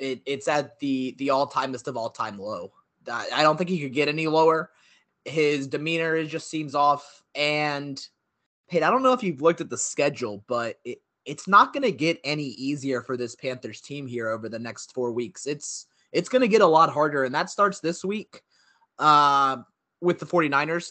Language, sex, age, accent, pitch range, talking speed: English, male, 20-39, American, 135-170 Hz, 200 wpm